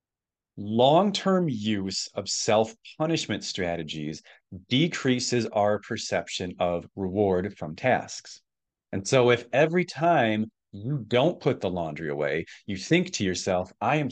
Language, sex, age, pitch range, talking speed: English, male, 30-49, 95-140 Hz, 125 wpm